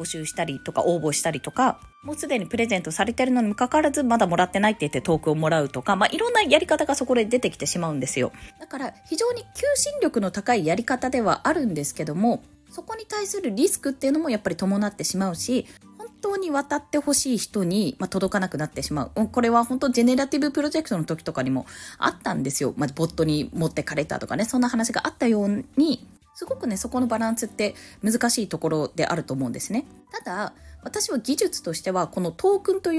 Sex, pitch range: female, 185-305 Hz